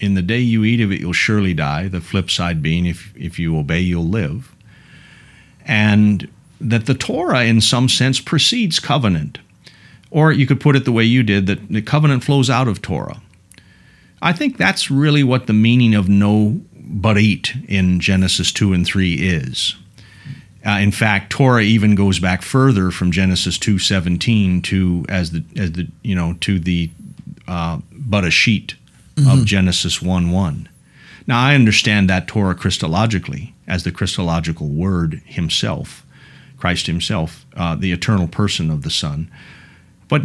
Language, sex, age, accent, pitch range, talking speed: English, male, 40-59, American, 90-130 Hz, 165 wpm